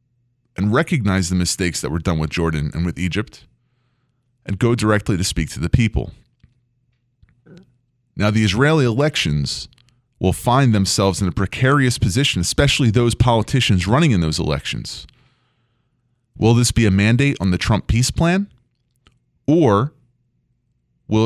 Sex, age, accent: male, 30-49, American